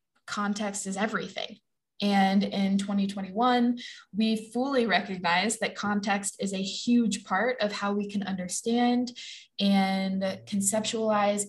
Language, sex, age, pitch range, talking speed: English, female, 20-39, 195-225 Hz, 115 wpm